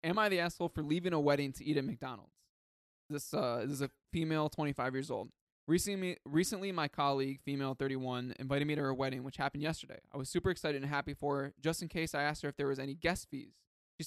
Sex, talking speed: male, 240 wpm